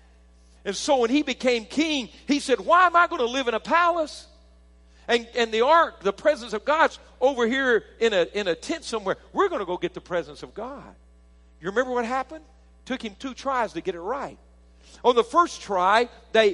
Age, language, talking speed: 50-69, English, 210 wpm